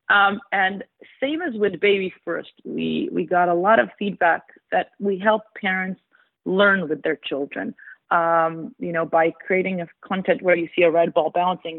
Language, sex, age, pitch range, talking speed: English, female, 30-49, 170-210 Hz, 185 wpm